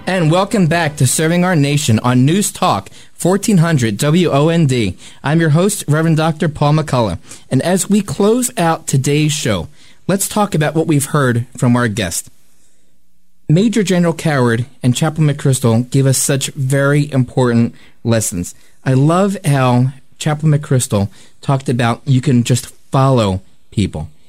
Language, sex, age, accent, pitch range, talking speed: English, male, 30-49, American, 120-160 Hz, 145 wpm